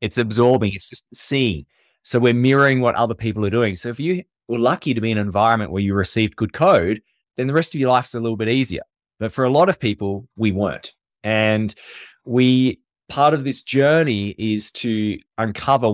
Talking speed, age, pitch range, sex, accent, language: 205 wpm, 20-39, 105-130 Hz, male, Australian, English